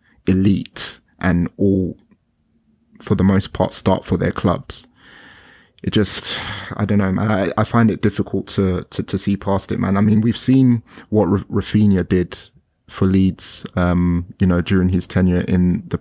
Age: 20-39